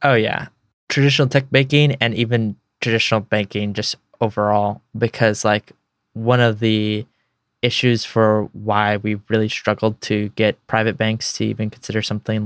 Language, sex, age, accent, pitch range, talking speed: English, male, 20-39, American, 105-120 Hz, 145 wpm